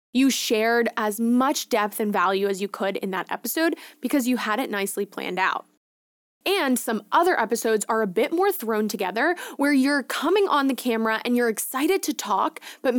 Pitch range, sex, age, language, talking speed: 215-280 Hz, female, 20-39, English, 195 wpm